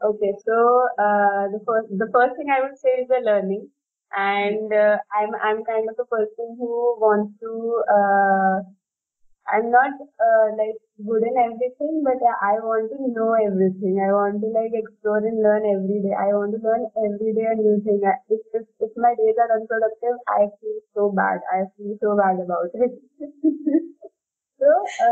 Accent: Indian